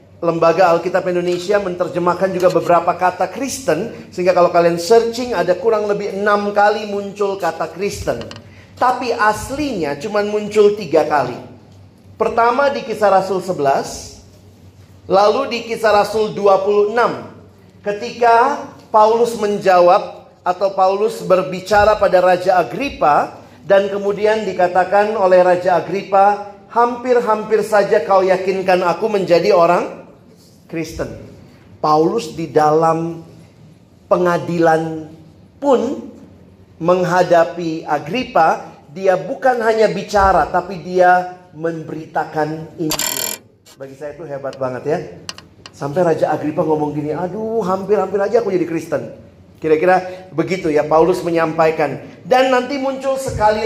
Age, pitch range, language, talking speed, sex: 40-59, 165-210 Hz, Indonesian, 110 wpm, male